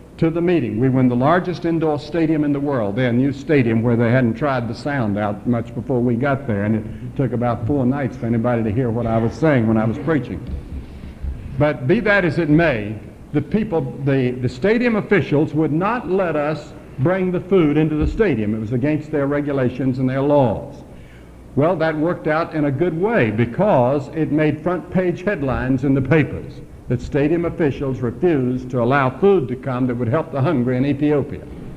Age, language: 60-79, English